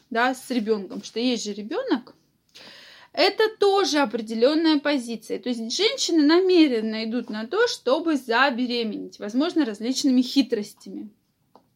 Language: Russian